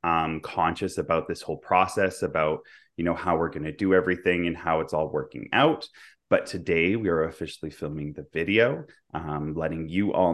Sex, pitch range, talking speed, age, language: male, 80-95 Hz, 190 wpm, 30-49, English